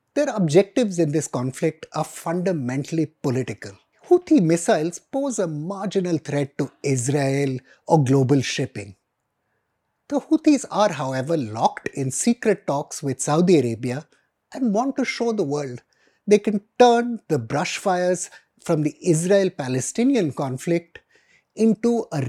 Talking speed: 130 wpm